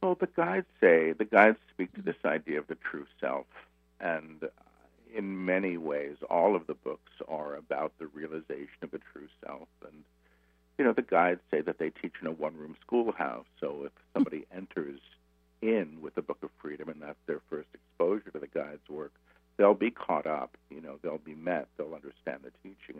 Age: 60-79